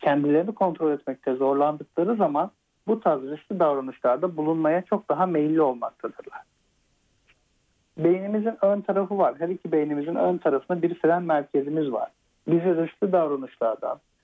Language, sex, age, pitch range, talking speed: Turkish, male, 60-79, 150-190 Hz, 120 wpm